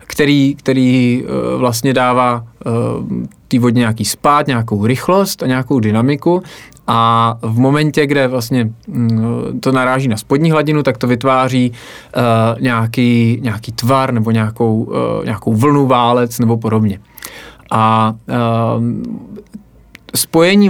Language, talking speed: Czech, 105 wpm